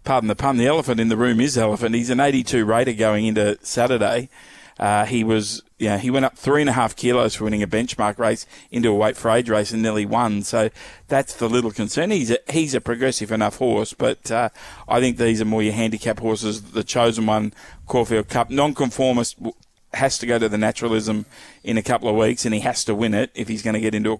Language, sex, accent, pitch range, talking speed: English, male, Australian, 110-120 Hz, 240 wpm